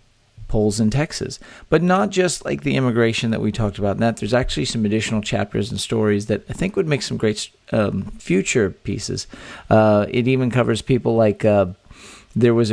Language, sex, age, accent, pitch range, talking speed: English, male, 40-59, American, 105-120 Hz, 190 wpm